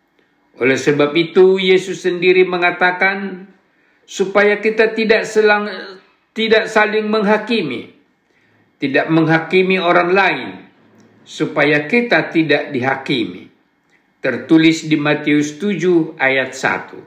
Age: 60-79